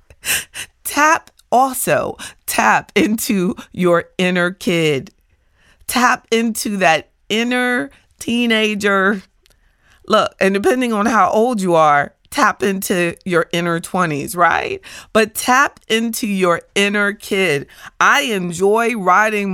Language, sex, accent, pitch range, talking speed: English, female, American, 170-225 Hz, 110 wpm